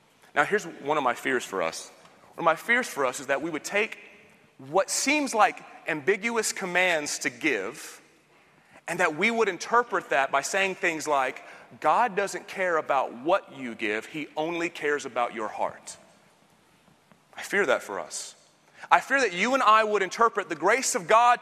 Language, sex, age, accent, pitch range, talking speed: English, male, 30-49, American, 150-235 Hz, 185 wpm